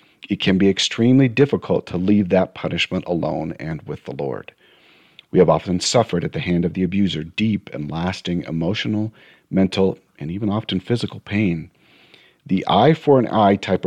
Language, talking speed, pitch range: English, 160 wpm, 90-110 Hz